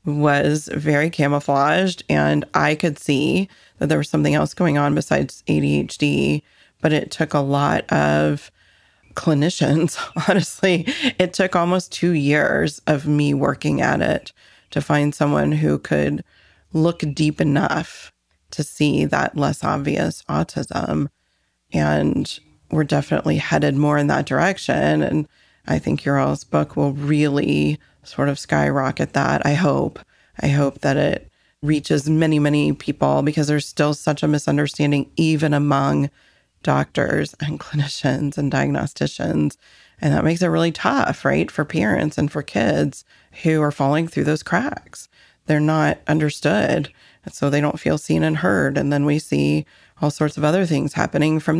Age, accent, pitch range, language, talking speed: 30-49, American, 135-155 Hz, English, 150 wpm